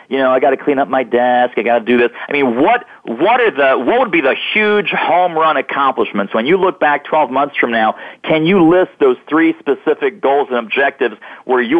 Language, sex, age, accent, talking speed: English, male, 40-59, American, 240 wpm